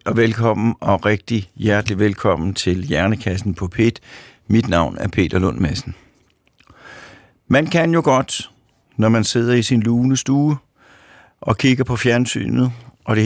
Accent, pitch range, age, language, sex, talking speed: native, 105-135 Hz, 60-79, Danish, male, 140 wpm